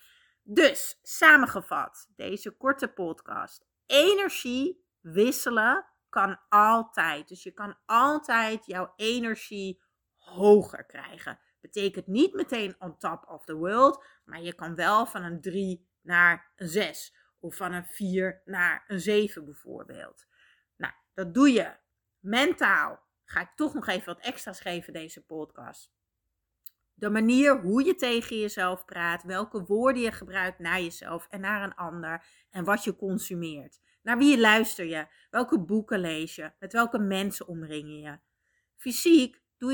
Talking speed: 140 wpm